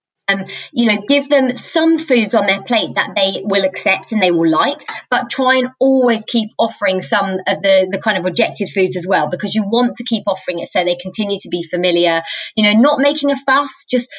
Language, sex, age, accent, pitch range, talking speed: English, female, 20-39, British, 195-245 Hz, 230 wpm